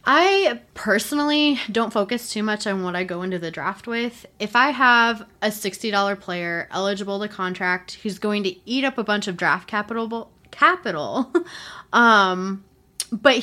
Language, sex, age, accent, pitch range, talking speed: English, female, 20-39, American, 180-230 Hz, 160 wpm